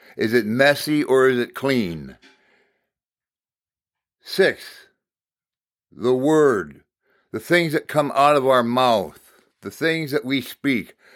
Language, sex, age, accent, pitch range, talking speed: English, male, 60-79, American, 125-155 Hz, 125 wpm